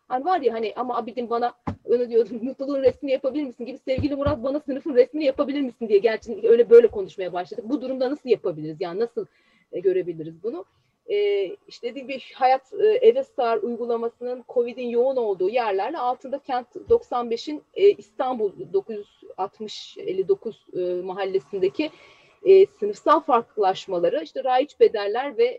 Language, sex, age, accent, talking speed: Turkish, female, 30-49, native, 140 wpm